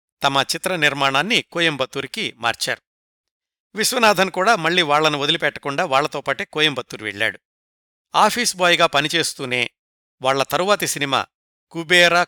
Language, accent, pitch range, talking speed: Telugu, native, 140-185 Hz, 100 wpm